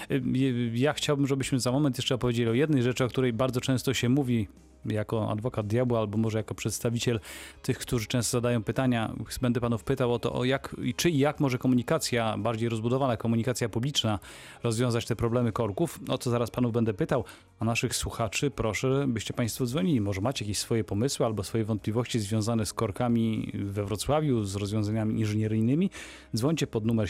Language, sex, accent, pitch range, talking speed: Polish, male, native, 110-135 Hz, 175 wpm